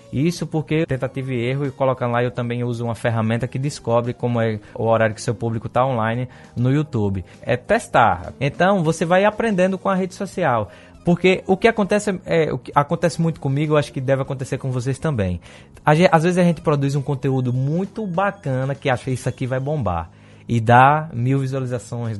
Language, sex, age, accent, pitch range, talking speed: Portuguese, male, 20-39, Brazilian, 125-180 Hz, 200 wpm